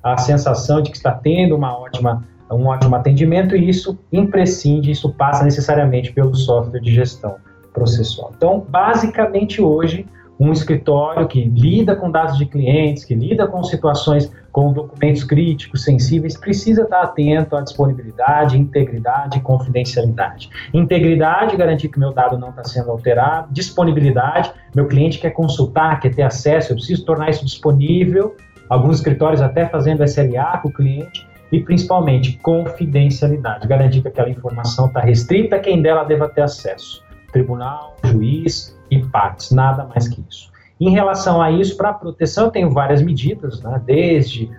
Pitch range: 125-160 Hz